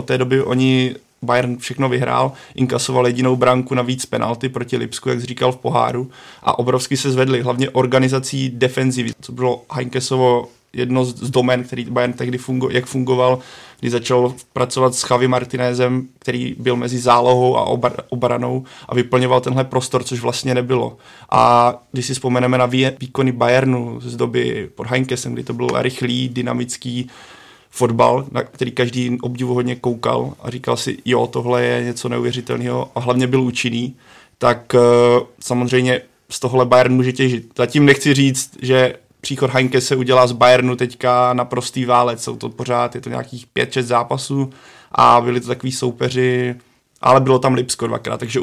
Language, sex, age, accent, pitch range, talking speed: Czech, male, 20-39, native, 125-130 Hz, 165 wpm